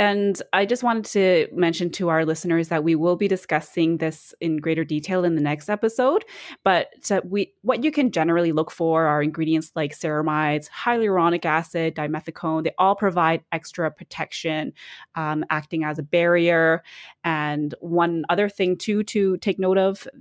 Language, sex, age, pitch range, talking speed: English, female, 20-39, 160-195 Hz, 165 wpm